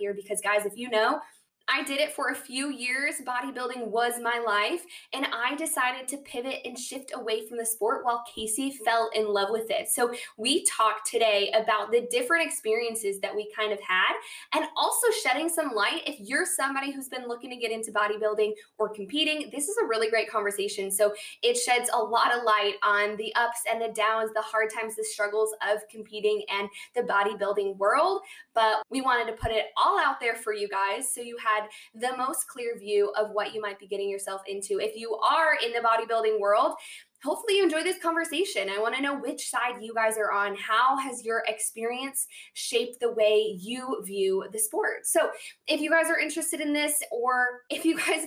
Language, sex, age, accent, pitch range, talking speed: English, female, 10-29, American, 215-275 Hz, 210 wpm